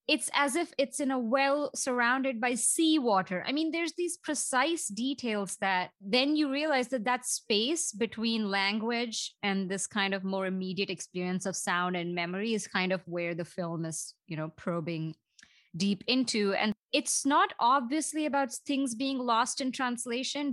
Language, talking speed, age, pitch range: English, 170 wpm, 20-39, 195-260 Hz